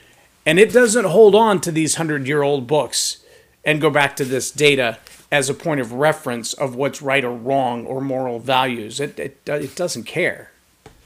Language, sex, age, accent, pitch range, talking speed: English, male, 40-59, American, 125-160 Hz, 180 wpm